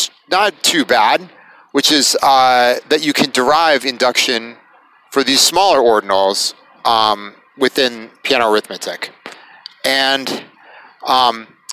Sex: male